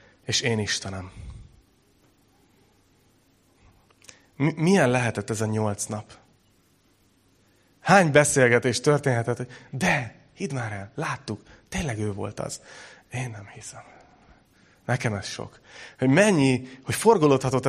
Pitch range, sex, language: 105-130 Hz, male, Hungarian